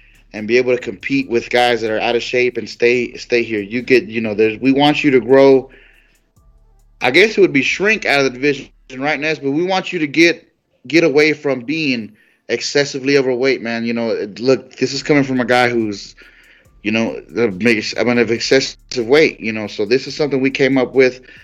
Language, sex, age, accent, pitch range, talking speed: English, male, 30-49, American, 115-140 Hz, 225 wpm